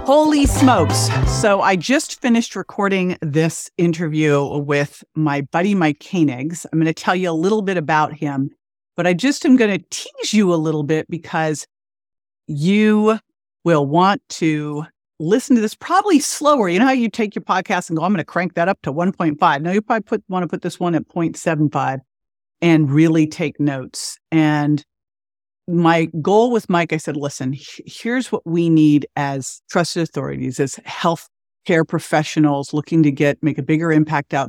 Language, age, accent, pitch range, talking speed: English, 50-69, American, 150-180 Hz, 180 wpm